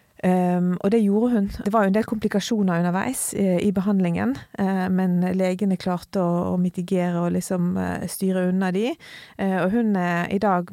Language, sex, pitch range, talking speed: English, female, 175-195 Hz, 180 wpm